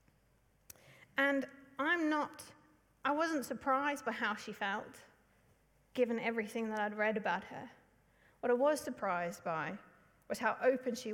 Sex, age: female, 40-59